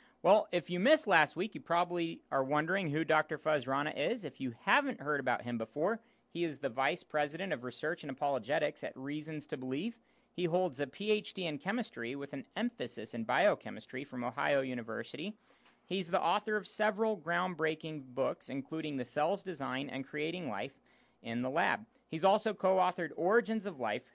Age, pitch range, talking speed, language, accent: 40-59, 140-205 Hz, 175 wpm, English, American